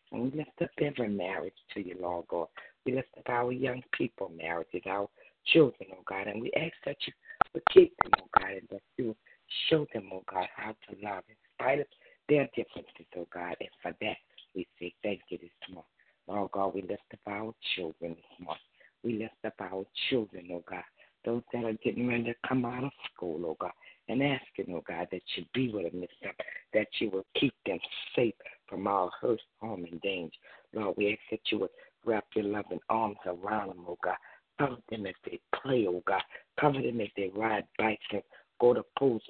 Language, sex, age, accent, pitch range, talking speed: English, female, 60-79, American, 95-130 Hz, 210 wpm